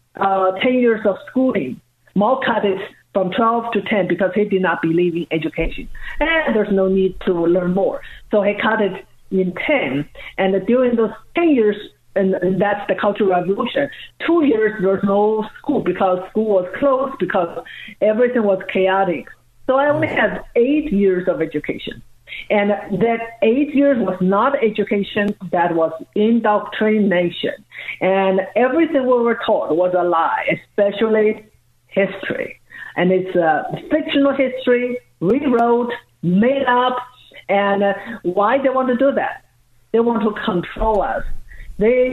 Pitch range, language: 185-235 Hz, English